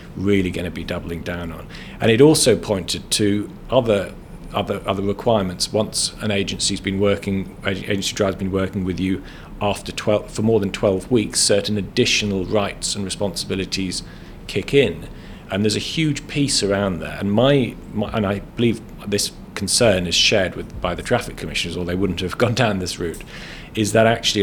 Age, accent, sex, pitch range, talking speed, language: 40-59, British, male, 90-105 Hz, 180 wpm, English